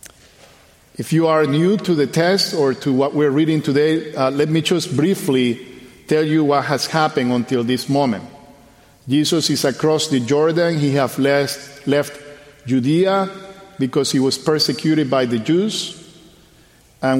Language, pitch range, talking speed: English, 140-165 Hz, 155 wpm